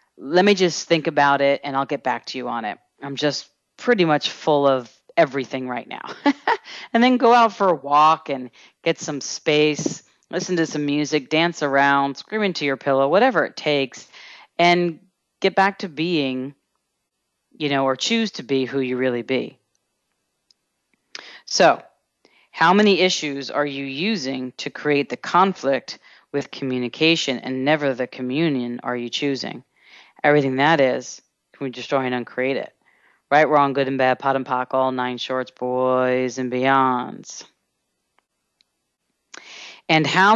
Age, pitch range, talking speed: 40-59, 130-160 Hz, 160 wpm